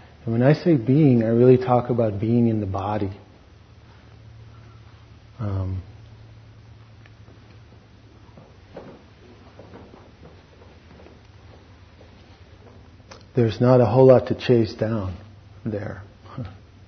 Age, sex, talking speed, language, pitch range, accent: 40-59, male, 80 wpm, English, 95-115 Hz, American